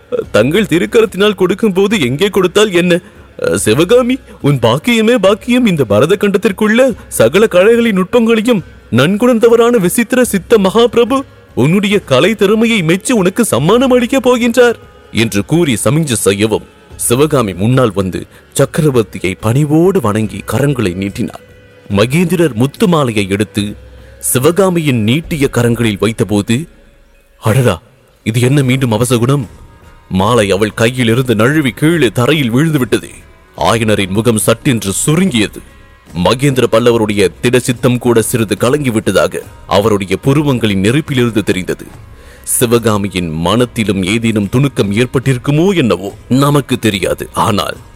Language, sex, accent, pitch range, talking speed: English, male, Indian, 110-180 Hz, 110 wpm